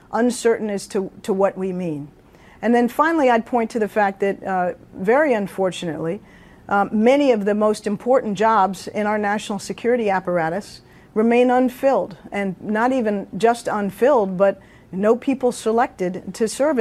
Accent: American